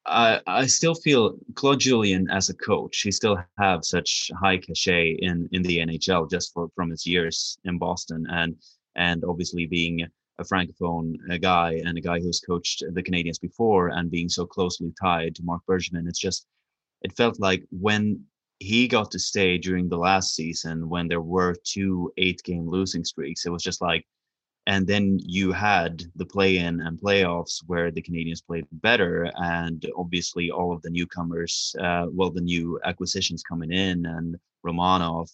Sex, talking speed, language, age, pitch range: male, 175 wpm, English, 20-39, 85-95 Hz